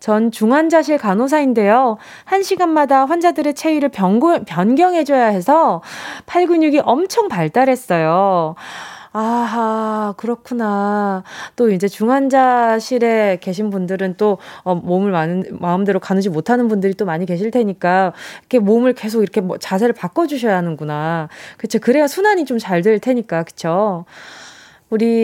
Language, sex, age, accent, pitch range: Korean, female, 20-39, native, 195-280 Hz